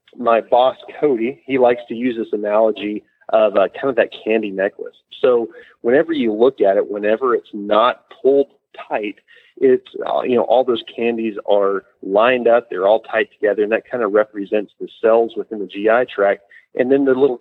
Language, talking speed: English, 195 wpm